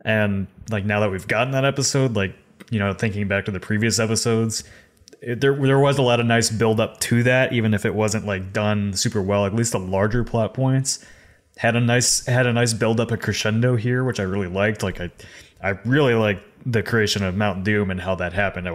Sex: male